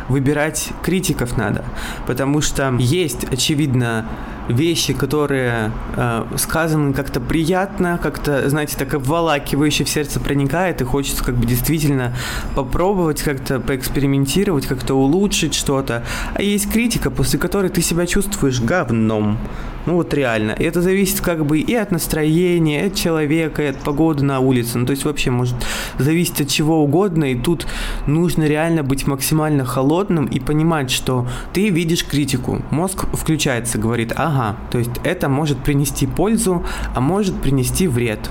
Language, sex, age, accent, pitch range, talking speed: Russian, male, 20-39, native, 125-160 Hz, 145 wpm